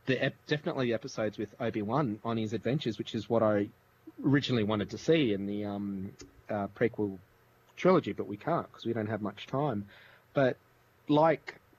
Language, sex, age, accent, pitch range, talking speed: English, male, 30-49, Australian, 110-135 Hz, 180 wpm